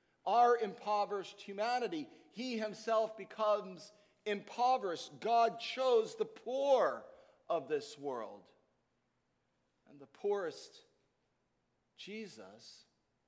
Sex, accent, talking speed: male, American, 80 wpm